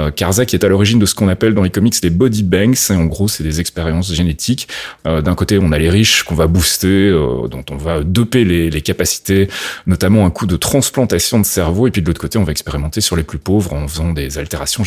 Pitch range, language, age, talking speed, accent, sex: 85-110 Hz, French, 30-49, 255 wpm, French, male